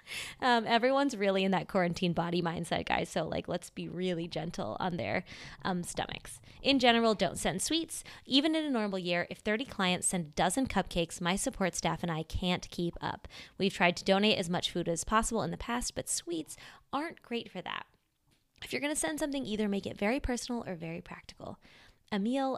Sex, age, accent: female, 20-39, American